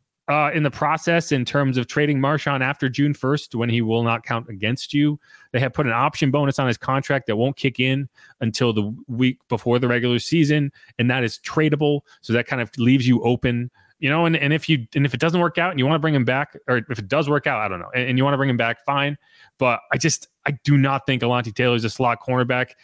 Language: English